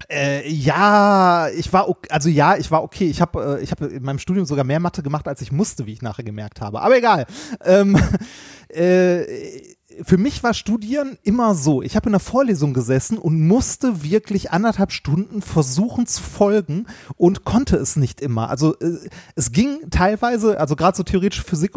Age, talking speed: 30-49, 190 wpm